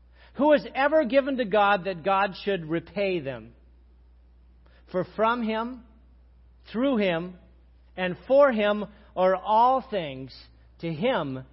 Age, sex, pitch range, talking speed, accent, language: 50-69, male, 145-235 Hz, 125 wpm, American, English